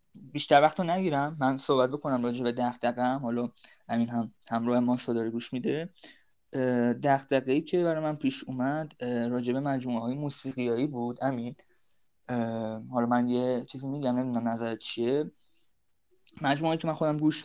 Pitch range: 120-140 Hz